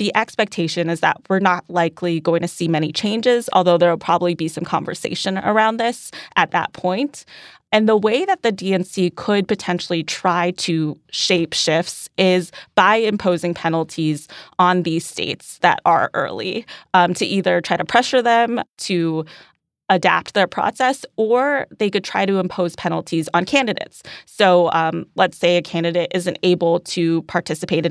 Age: 20-39